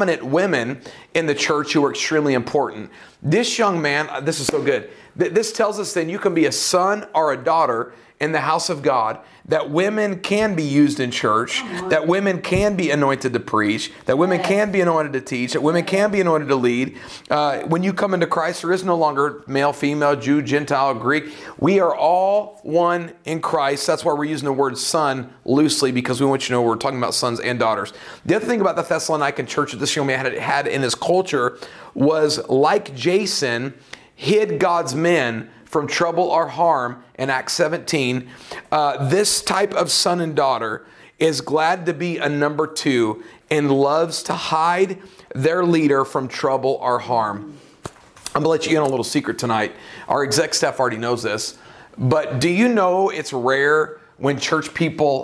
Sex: male